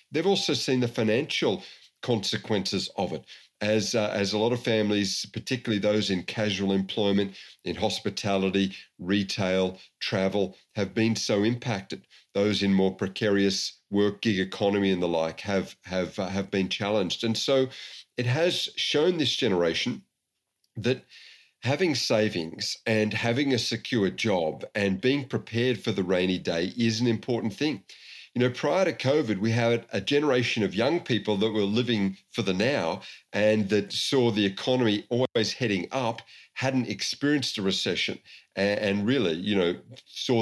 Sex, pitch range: male, 95-115 Hz